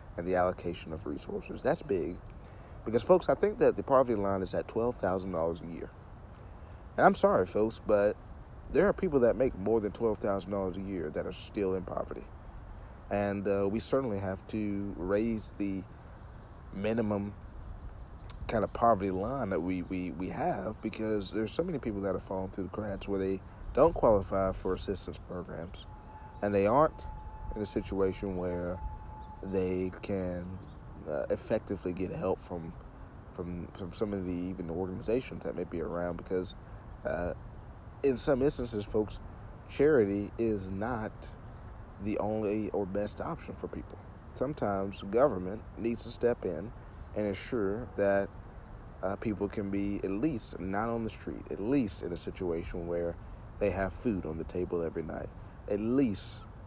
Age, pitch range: 40-59, 90-110 Hz